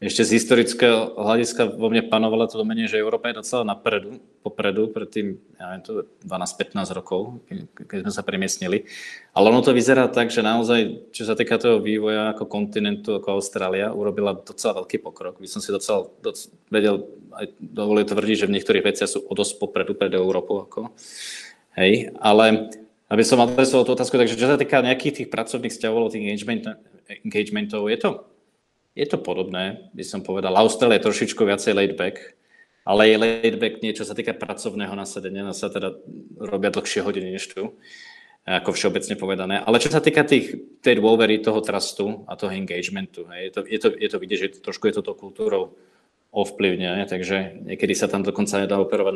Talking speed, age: 175 wpm, 20-39